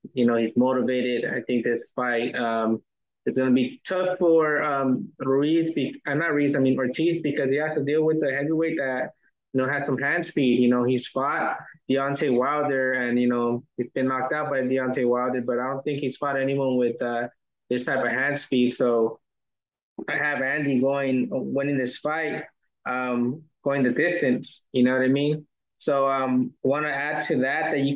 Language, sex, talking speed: English, male, 200 wpm